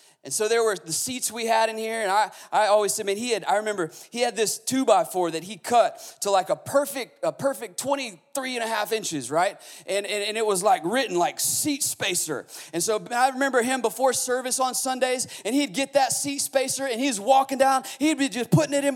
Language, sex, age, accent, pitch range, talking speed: English, male, 30-49, American, 220-290 Hz, 245 wpm